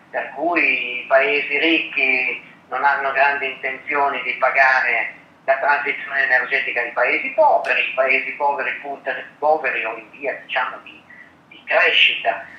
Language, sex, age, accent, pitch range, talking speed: Italian, male, 40-59, native, 135-210 Hz, 130 wpm